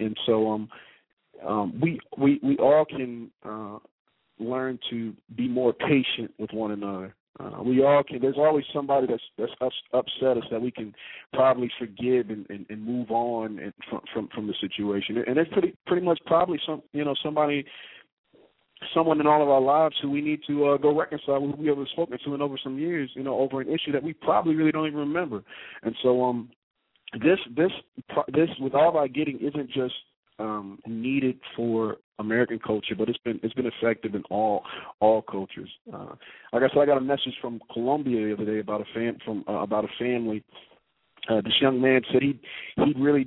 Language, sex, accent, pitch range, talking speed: English, male, American, 115-145 Hz, 205 wpm